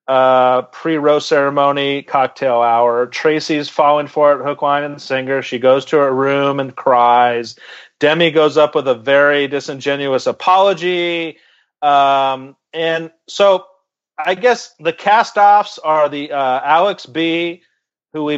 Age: 40-59